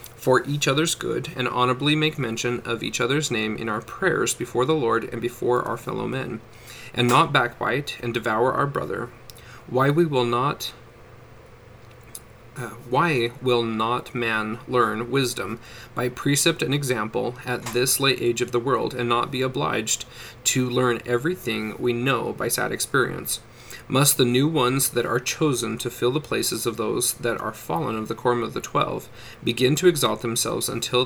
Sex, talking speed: male, 175 wpm